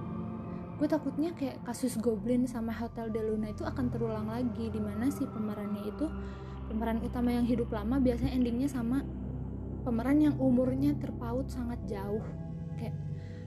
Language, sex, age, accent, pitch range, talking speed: Indonesian, female, 20-39, native, 185-245 Hz, 140 wpm